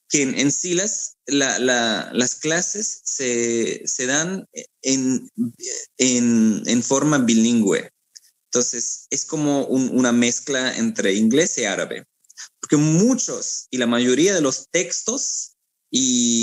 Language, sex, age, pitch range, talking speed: Spanish, male, 20-39, 115-165 Hz, 130 wpm